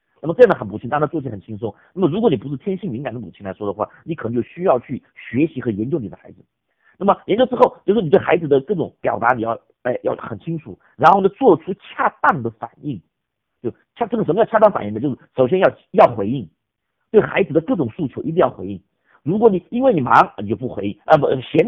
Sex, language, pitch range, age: male, Chinese, 115-180 Hz, 50-69